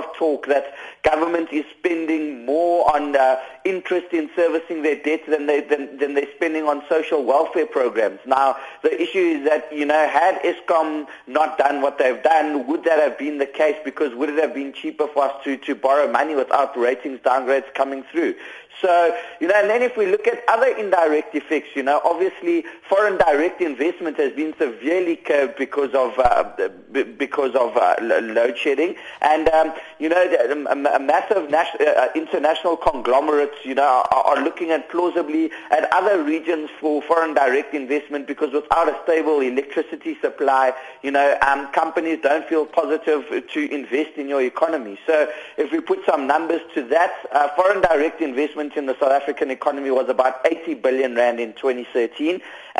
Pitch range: 140-175 Hz